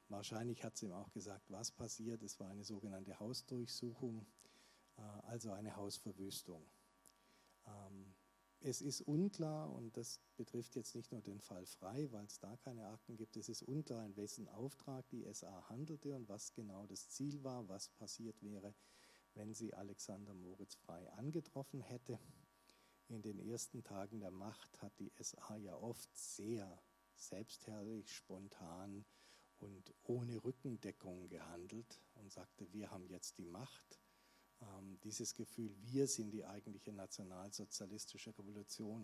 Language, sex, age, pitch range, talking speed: German, male, 50-69, 95-115 Hz, 145 wpm